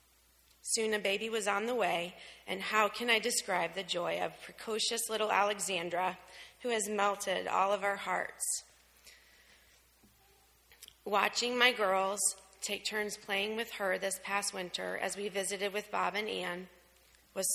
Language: English